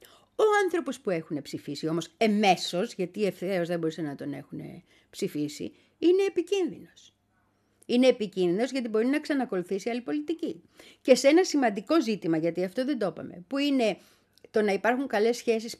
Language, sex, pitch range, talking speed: Greek, female, 175-265 Hz, 160 wpm